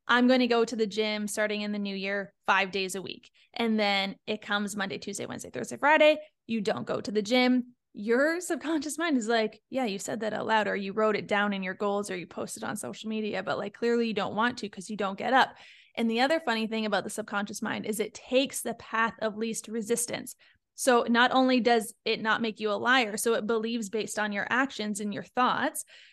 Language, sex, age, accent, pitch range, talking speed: English, female, 20-39, American, 215-255 Hz, 240 wpm